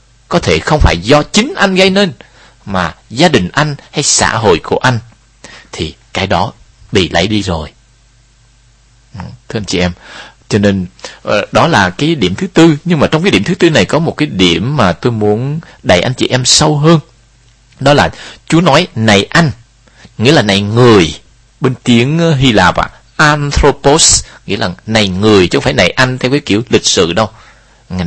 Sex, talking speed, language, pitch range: male, 190 wpm, Vietnamese, 110-160 Hz